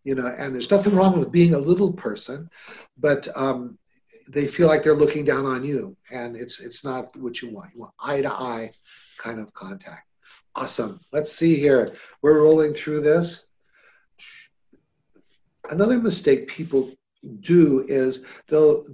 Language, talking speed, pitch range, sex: English, 150 wpm, 130-160 Hz, male